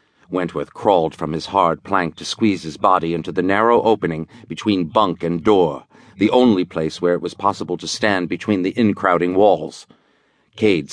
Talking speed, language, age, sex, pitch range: 175 wpm, English, 50-69, male, 85-110 Hz